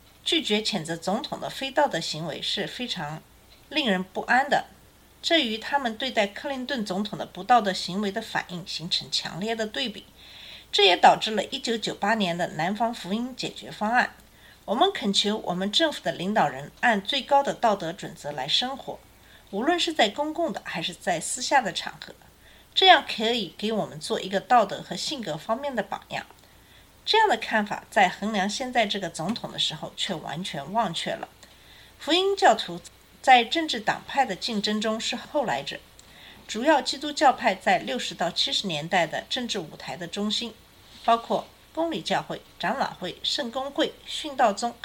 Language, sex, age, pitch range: Chinese, female, 50-69, 190-270 Hz